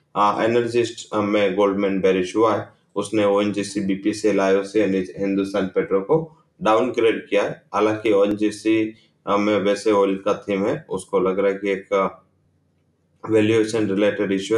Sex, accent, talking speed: male, Indian, 150 wpm